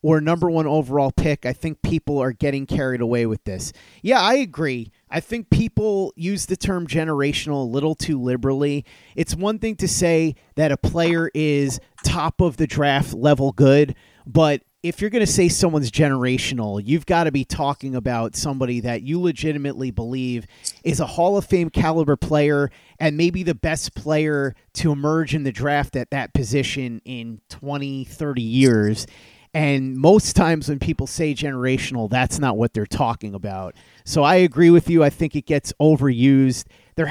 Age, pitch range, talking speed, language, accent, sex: 30-49, 125-155 Hz, 175 wpm, English, American, male